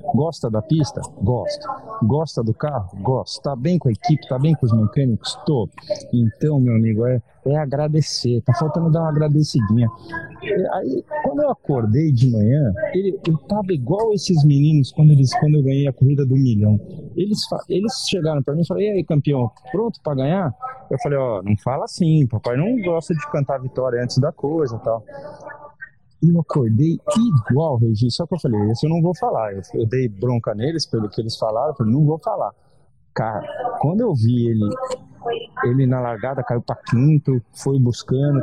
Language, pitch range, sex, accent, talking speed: Portuguese, 130-200 Hz, male, Brazilian, 190 wpm